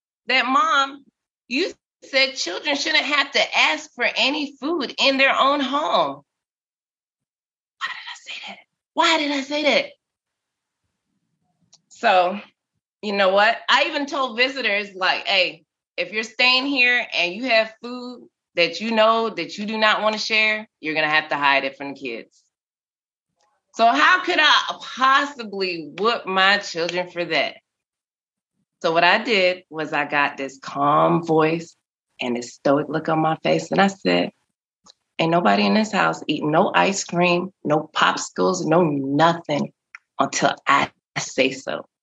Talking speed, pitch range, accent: 160 wpm, 170-265 Hz, American